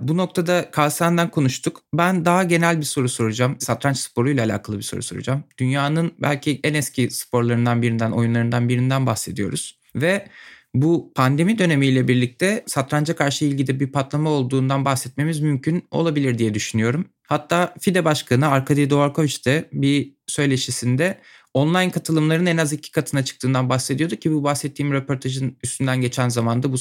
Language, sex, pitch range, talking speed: Turkish, male, 120-155 Hz, 145 wpm